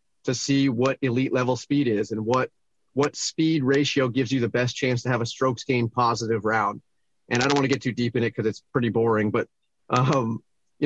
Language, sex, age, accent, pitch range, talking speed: English, male, 30-49, American, 120-145 Hz, 225 wpm